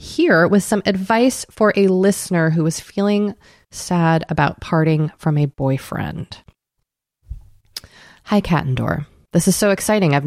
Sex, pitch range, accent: female, 155-205 Hz, American